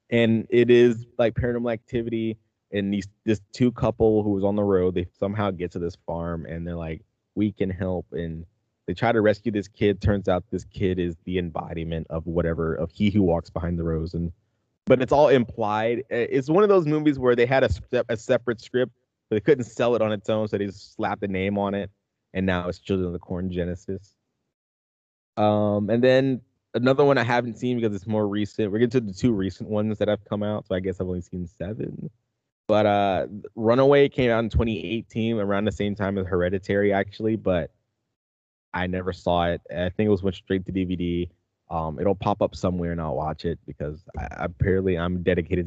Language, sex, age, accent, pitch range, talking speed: English, male, 20-39, American, 90-115 Hz, 210 wpm